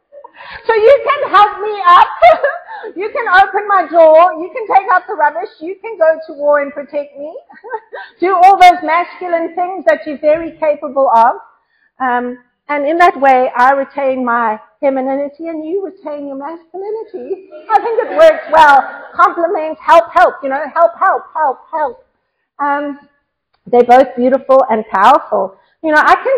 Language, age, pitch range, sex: English, 40-59, 270-385 Hz, female